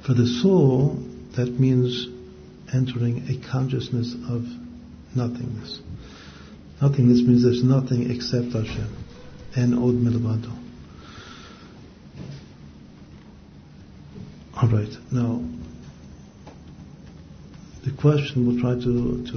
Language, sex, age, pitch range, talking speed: English, male, 50-69, 100-130 Hz, 75 wpm